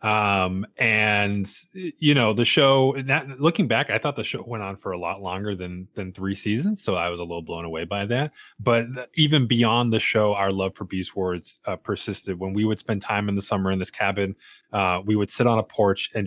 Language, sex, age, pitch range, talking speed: English, male, 20-39, 95-120 Hz, 235 wpm